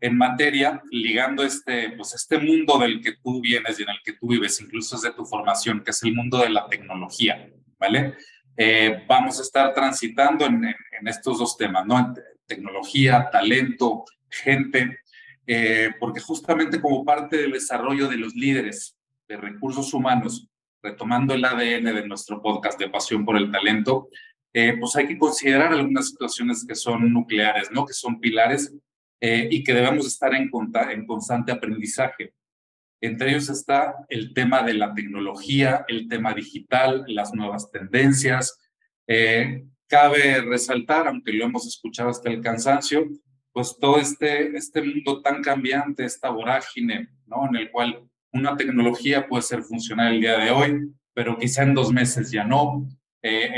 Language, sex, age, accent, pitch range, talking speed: Spanish, male, 40-59, Mexican, 115-140 Hz, 165 wpm